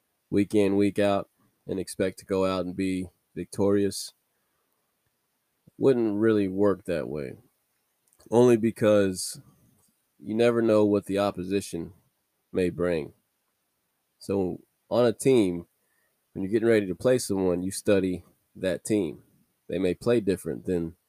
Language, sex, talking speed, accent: English, male, 135 wpm, American